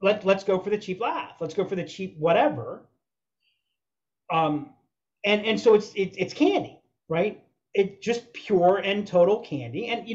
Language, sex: English, male